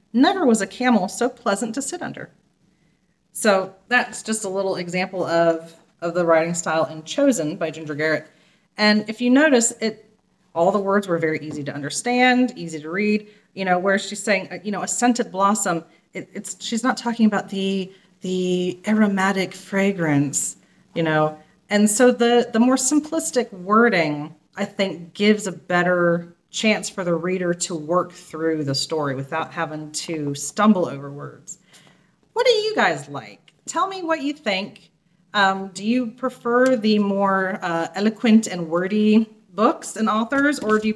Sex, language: female, English